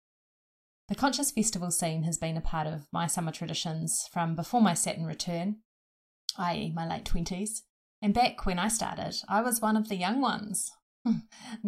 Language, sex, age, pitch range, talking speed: English, female, 30-49, 170-215 Hz, 170 wpm